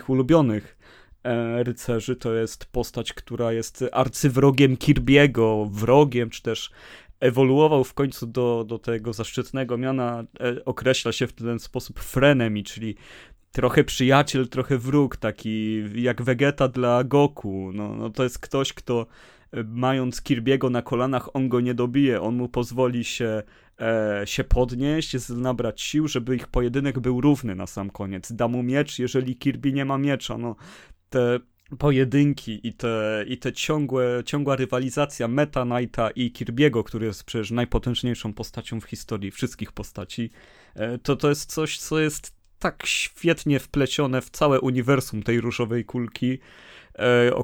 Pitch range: 115-135 Hz